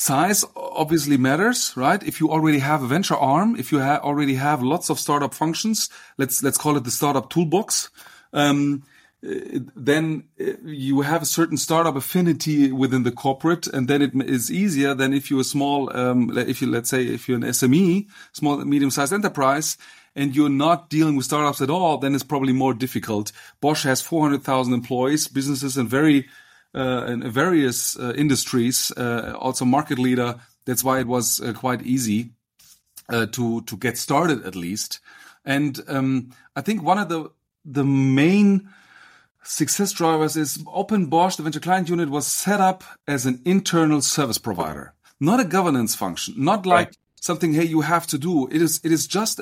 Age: 30-49